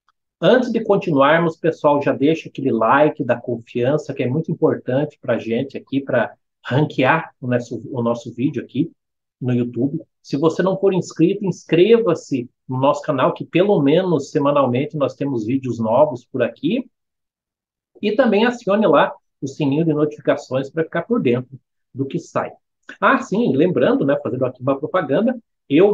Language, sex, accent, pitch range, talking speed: Portuguese, male, Brazilian, 135-180 Hz, 165 wpm